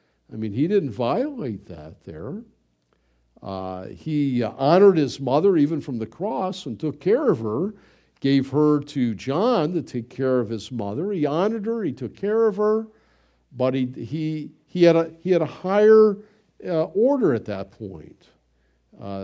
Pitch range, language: 125-195 Hz, English